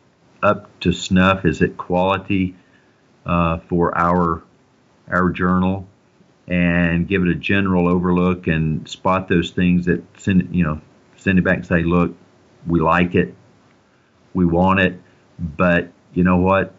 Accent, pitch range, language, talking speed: American, 80-90 Hz, English, 145 wpm